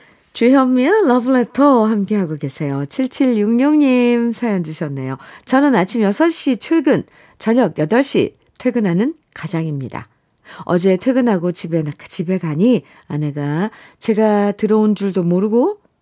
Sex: female